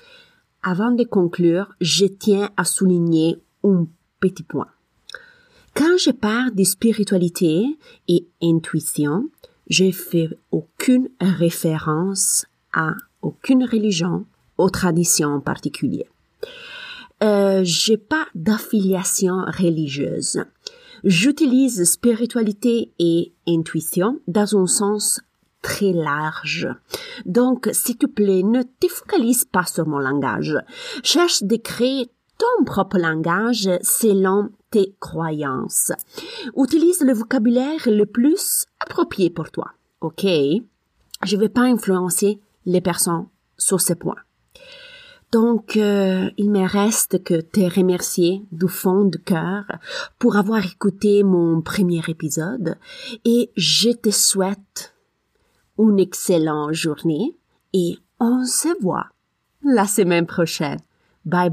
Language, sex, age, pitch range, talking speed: French, female, 30-49, 175-245 Hz, 110 wpm